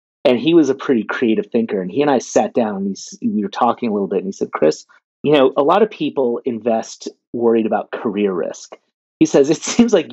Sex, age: male, 30-49